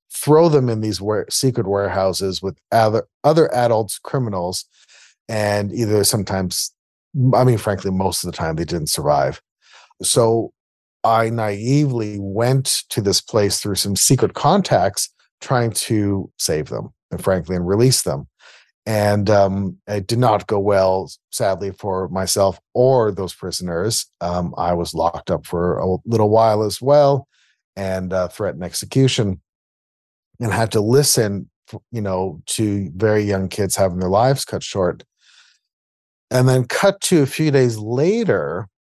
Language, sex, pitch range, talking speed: English, male, 95-120 Hz, 150 wpm